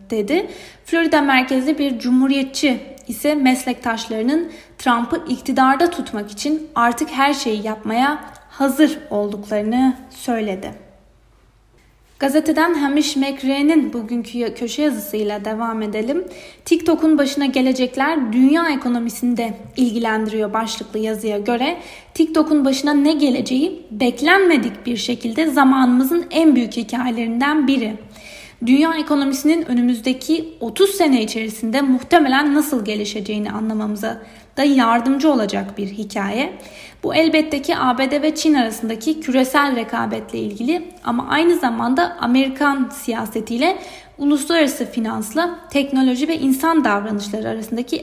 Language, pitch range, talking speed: Turkish, 230-300 Hz, 105 wpm